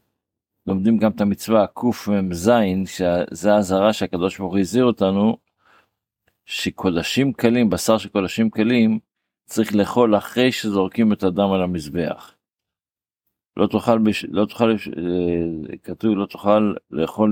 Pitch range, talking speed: 95-110 Hz, 115 wpm